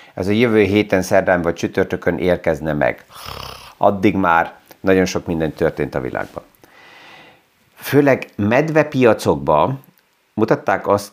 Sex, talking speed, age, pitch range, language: male, 115 wpm, 50-69, 90-110 Hz, Hungarian